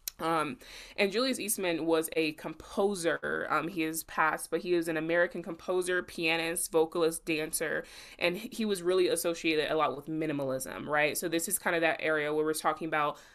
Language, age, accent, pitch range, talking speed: English, 20-39, American, 155-180 Hz, 185 wpm